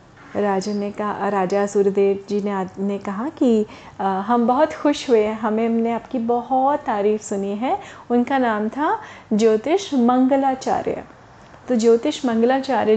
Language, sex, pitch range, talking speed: Hindi, female, 215-270 Hz, 145 wpm